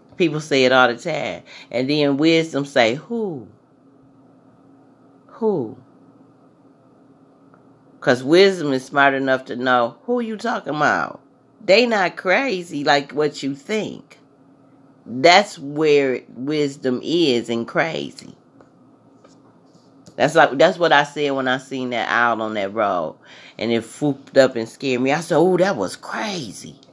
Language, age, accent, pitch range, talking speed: English, 40-59, American, 125-150 Hz, 145 wpm